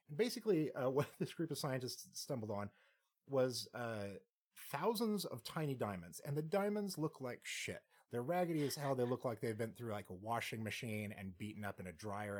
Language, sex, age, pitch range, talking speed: English, male, 30-49, 105-145 Hz, 205 wpm